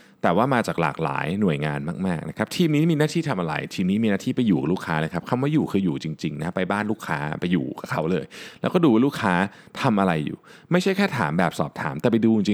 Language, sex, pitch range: Thai, male, 100-150 Hz